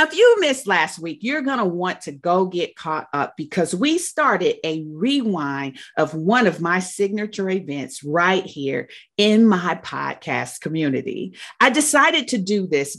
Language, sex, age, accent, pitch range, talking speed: English, female, 40-59, American, 155-230 Hz, 170 wpm